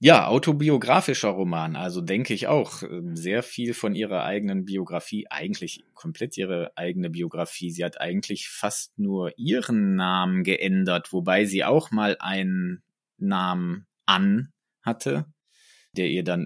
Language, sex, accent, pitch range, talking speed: German, male, German, 90-115 Hz, 135 wpm